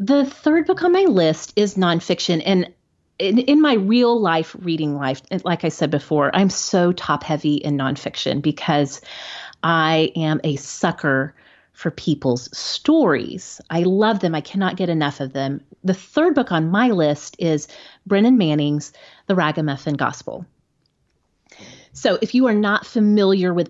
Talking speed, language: 155 wpm, English